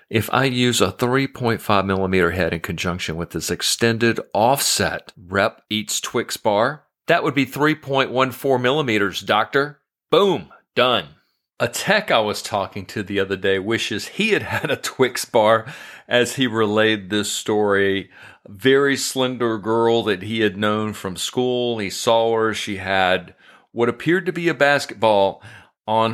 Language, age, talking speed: English, 40-59, 155 wpm